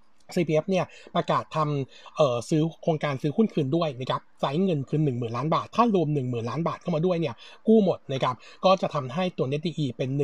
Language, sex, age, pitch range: Thai, male, 60-79, 140-175 Hz